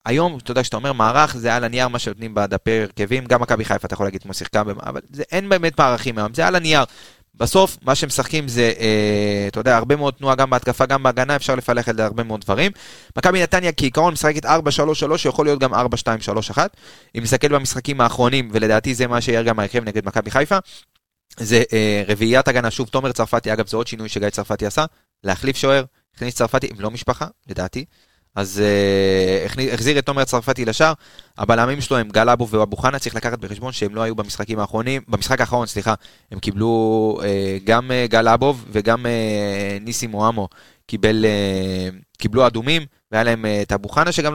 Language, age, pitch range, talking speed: Hebrew, 20-39, 105-130 Hz, 165 wpm